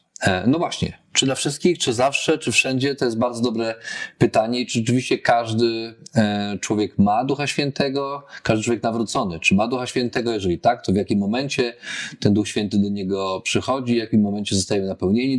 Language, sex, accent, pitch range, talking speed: Polish, male, native, 105-130 Hz, 180 wpm